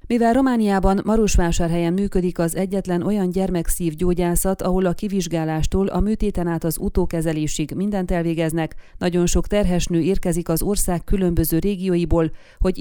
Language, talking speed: Hungarian, 125 wpm